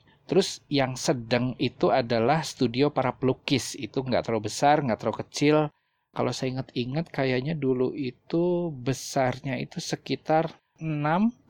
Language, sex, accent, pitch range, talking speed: Indonesian, male, native, 115-140 Hz, 130 wpm